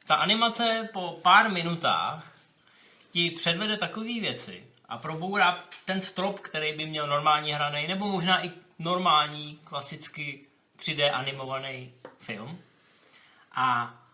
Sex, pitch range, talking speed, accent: male, 140-175 Hz, 115 wpm, native